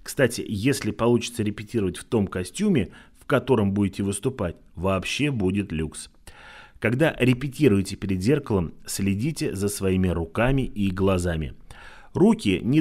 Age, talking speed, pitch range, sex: 30-49, 120 wpm, 95-130 Hz, male